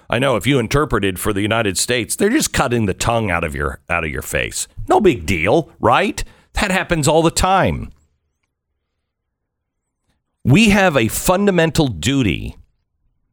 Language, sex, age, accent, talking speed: English, male, 50-69, American, 160 wpm